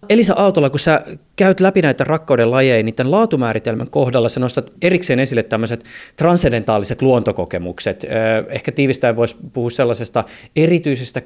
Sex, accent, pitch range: male, native, 110-145 Hz